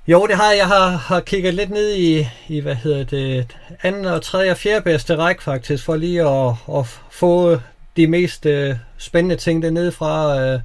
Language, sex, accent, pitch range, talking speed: Danish, male, native, 130-170 Hz, 180 wpm